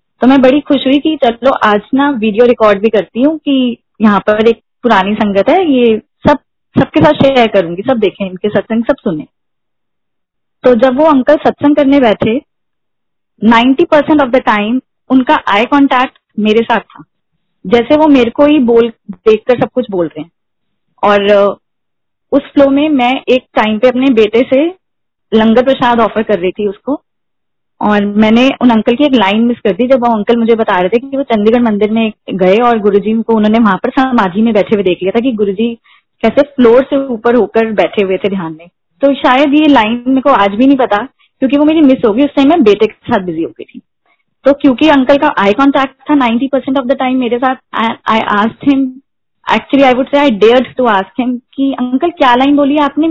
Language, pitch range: Hindi, 215-275 Hz